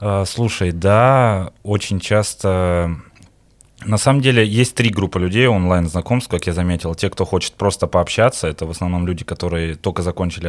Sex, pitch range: male, 85-105 Hz